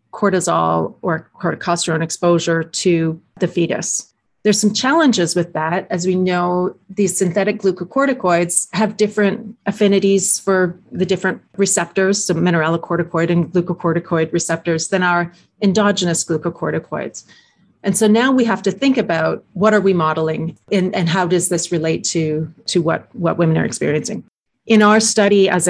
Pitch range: 170-205 Hz